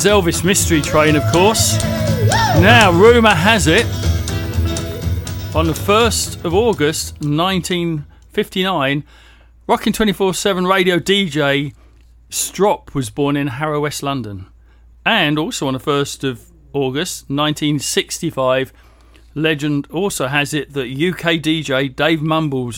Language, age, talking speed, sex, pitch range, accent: English, 40-59, 115 wpm, male, 115-165 Hz, British